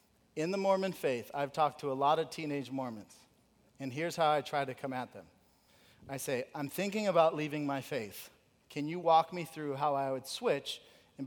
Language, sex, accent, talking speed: English, male, American, 210 wpm